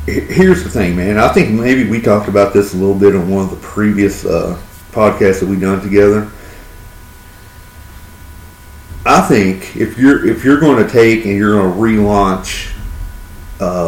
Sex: male